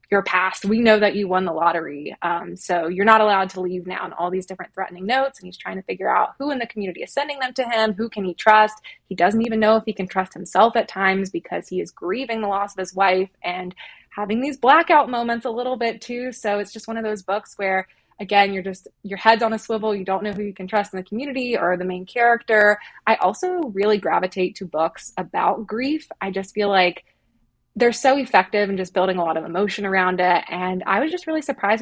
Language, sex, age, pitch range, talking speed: English, female, 20-39, 185-225 Hz, 245 wpm